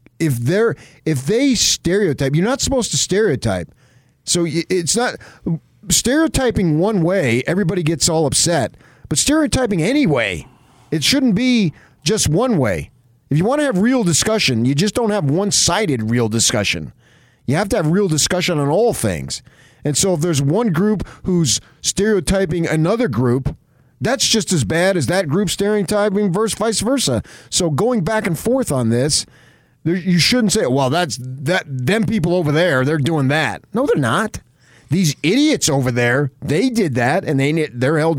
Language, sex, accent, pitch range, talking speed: English, male, American, 130-195 Hz, 170 wpm